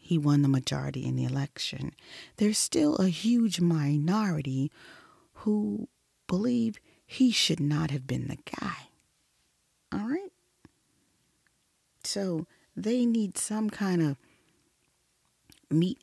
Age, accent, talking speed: 40-59, American, 110 wpm